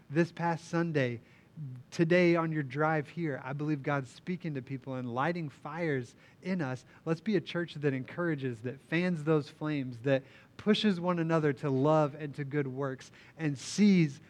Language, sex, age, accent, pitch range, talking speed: English, male, 30-49, American, 125-155 Hz, 170 wpm